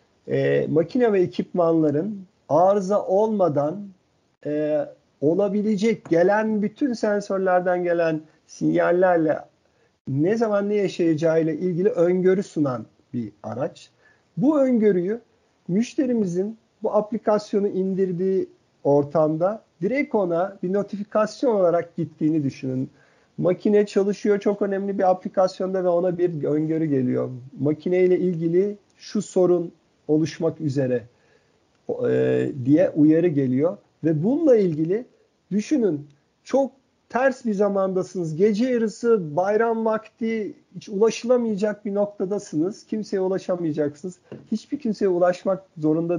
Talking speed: 100 wpm